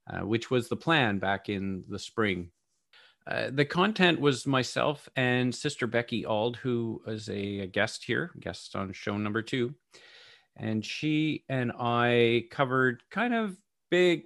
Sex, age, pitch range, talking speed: male, 40-59, 105-130 Hz, 155 wpm